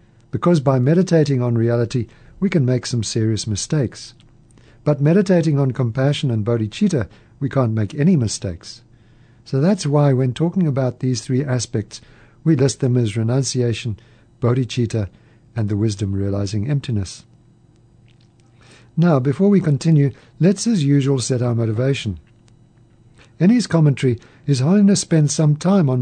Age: 60-79